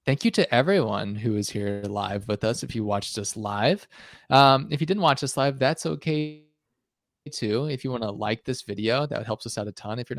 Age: 20-39